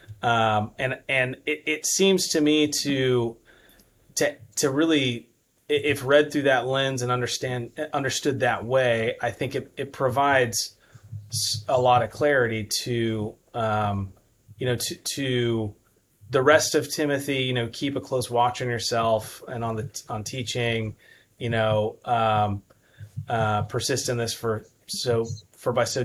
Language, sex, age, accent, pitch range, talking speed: English, male, 30-49, American, 110-135 Hz, 150 wpm